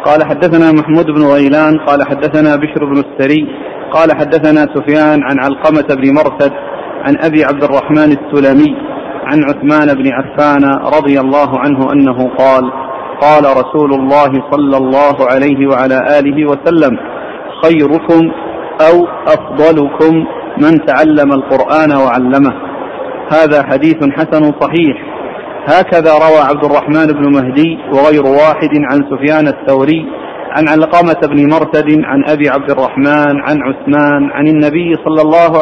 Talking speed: 130 wpm